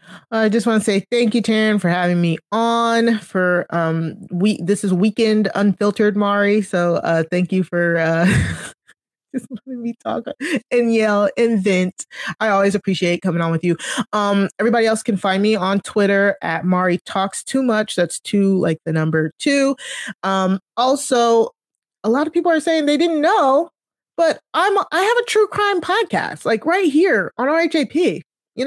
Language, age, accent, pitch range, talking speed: English, 20-39, American, 180-250 Hz, 180 wpm